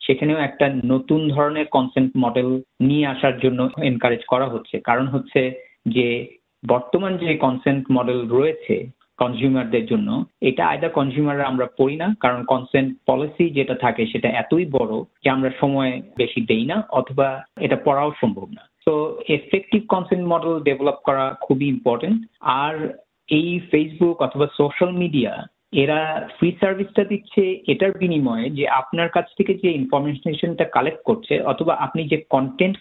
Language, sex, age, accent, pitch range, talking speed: Bengali, male, 50-69, native, 135-175 Hz, 95 wpm